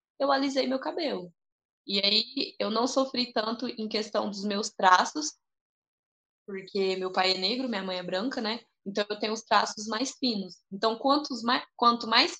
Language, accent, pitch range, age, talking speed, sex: Portuguese, Brazilian, 190-235 Hz, 10-29, 175 wpm, female